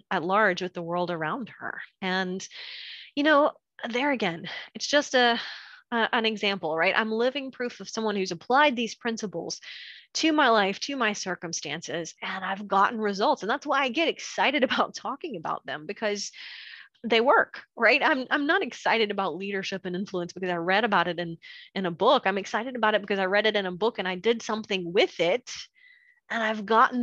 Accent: American